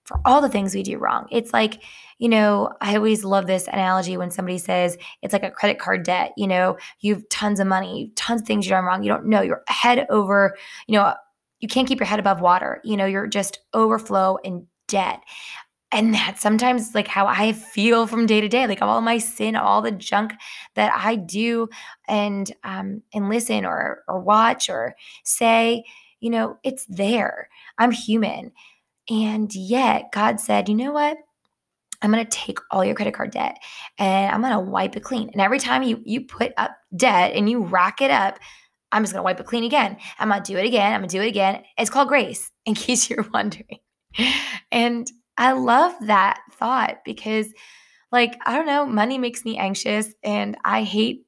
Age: 10-29